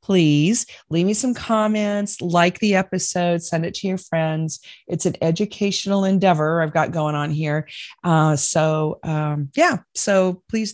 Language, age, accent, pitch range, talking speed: English, 40-59, American, 160-205 Hz, 155 wpm